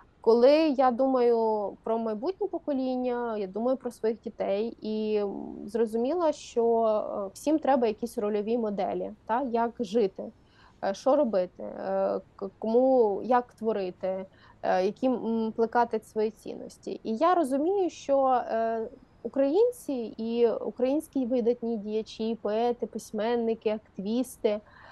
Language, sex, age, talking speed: Ukrainian, female, 20-39, 105 wpm